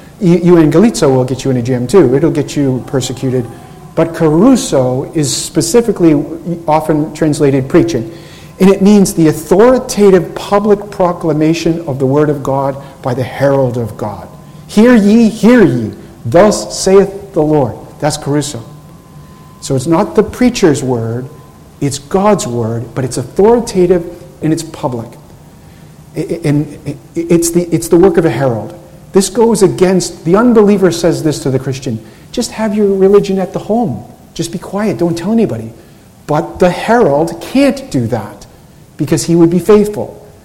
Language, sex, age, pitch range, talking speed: English, male, 50-69, 135-185 Hz, 155 wpm